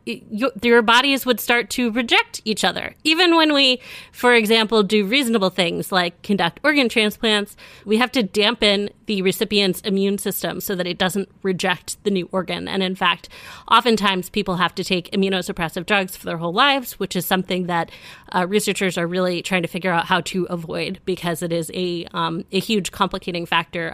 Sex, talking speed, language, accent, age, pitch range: female, 185 wpm, English, American, 30-49, 180-210 Hz